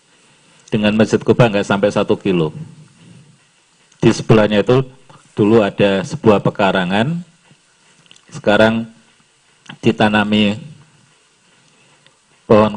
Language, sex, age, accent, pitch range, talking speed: Indonesian, male, 40-59, native, 110-155 Hz, 80 wpm